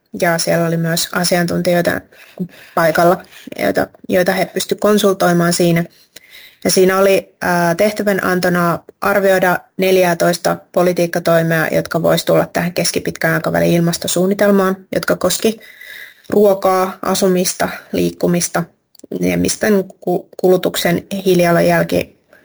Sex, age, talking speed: female, 20-39, 95 wpm